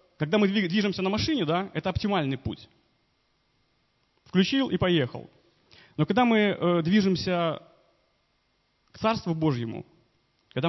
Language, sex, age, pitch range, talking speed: Russian, male, 30-49, 150-190 Hz, 120 wpm